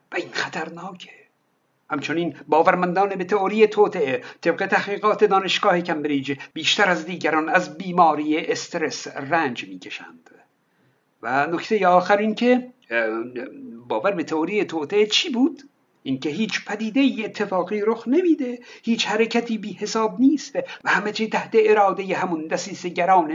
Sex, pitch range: male, 180-230 Hz